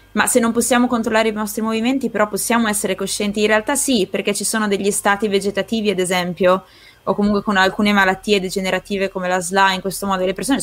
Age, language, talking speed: 20-39, Italian, 210 wpm